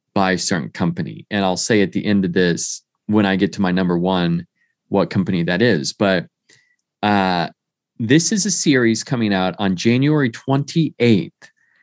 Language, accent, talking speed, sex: English, American, 170 wpm, male